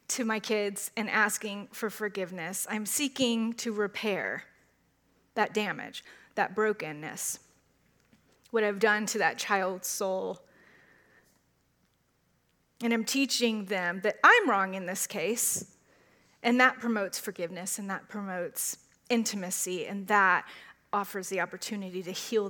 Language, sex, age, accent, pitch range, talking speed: English, female, 30-49, American, 195-235 Hz, 125 wpm